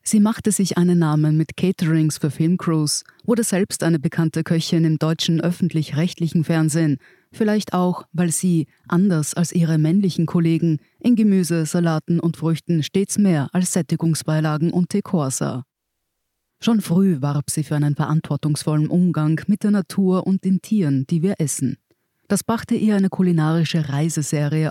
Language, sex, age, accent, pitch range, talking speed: German, female, 30-49, German, 155-190 Hz, 150 wpm